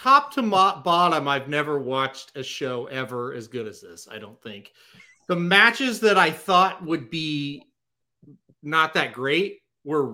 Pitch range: 145-195 Hz